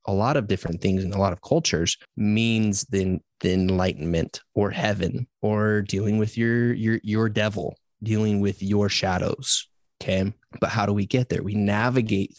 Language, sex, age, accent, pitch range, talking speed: English, male, 20-39, American, 95-115 Hz, 175 wpm